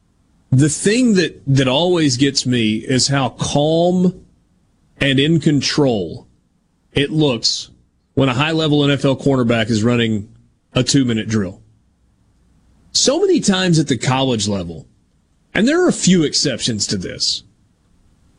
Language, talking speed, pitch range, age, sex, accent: English, 130 wpm, 120-175 Hz, 30-49, male, American